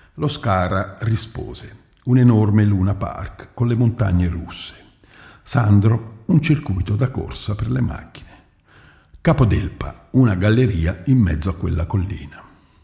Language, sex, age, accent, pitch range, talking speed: Italian, male, 50-69, native, 90-120 Hz, 125 wpm